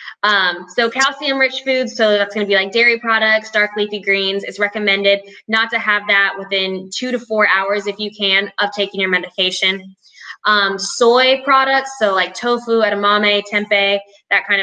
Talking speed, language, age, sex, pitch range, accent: 180 wpm, English, 10-29, female, 195-235 Hz, American